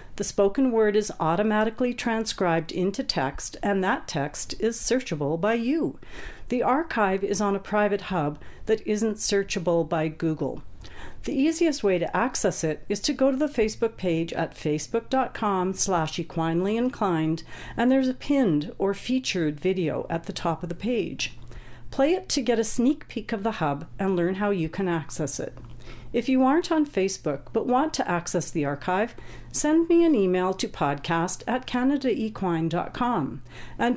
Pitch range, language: 165-245 Hz, English